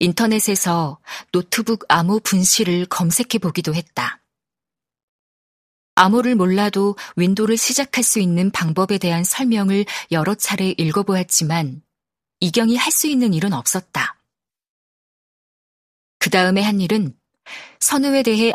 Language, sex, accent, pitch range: Korean, female, native, 175-225 Hz